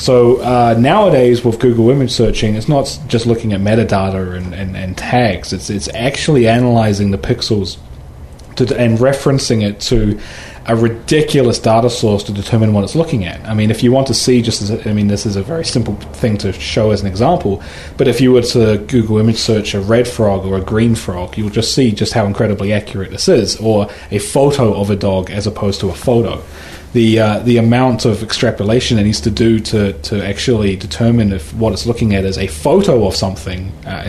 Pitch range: 100-120 Hz